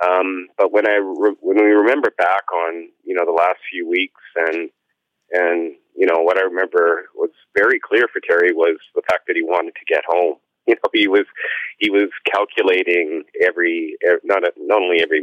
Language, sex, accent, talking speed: English, male, American, 185 wpm